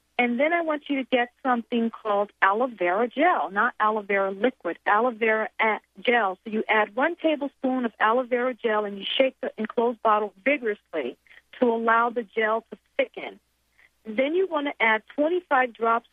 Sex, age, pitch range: female, 40-59, 205-260 Hz